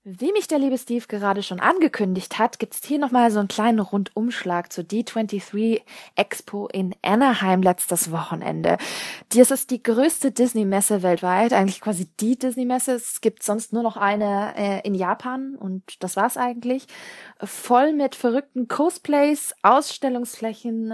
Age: 20-39